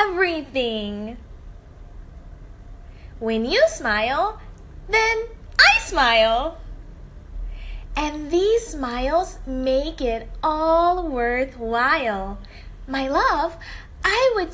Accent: American